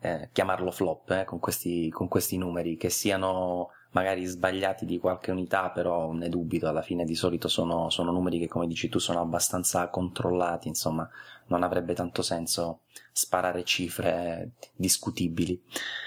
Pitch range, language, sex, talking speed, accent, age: 85-95 Hz, Italian, male, 155 wpm, native, 30-49